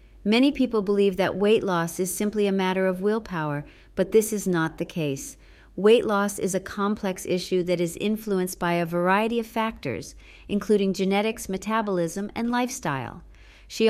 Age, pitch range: 40-59, 175-210 Hz